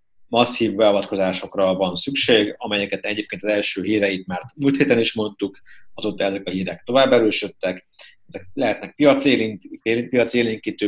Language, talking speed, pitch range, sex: Hungarian, 130 wpm, 100-115 Hz, male